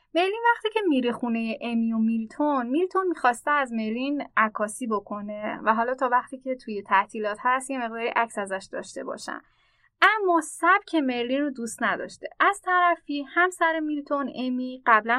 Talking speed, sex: 165 wpm, female